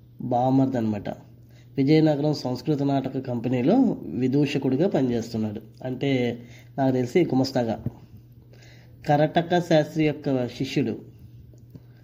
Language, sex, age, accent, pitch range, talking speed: Telugu, female, 20-39, native, 120-150 Hz, 75 wpm